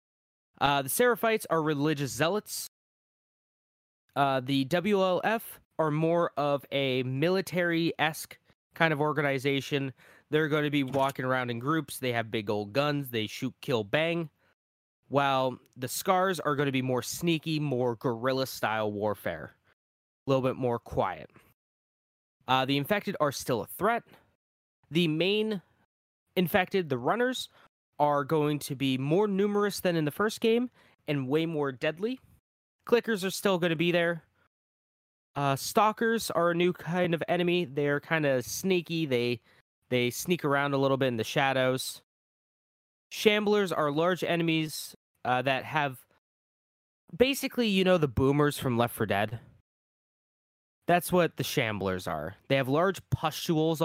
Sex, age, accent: male, 20-39, American